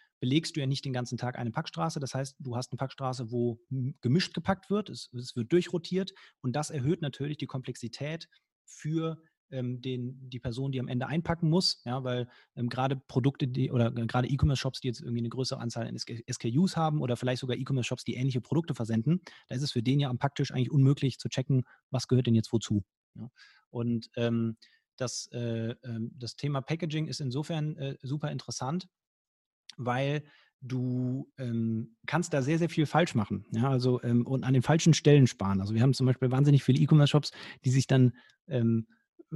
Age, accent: 30-49, German